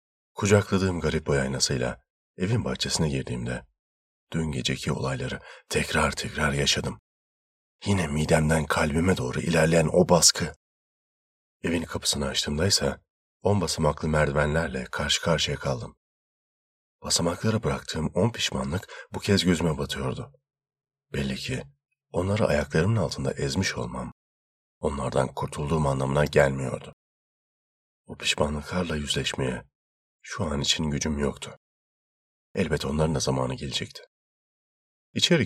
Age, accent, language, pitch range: 40-59, native, Turkish, 65-90 Hz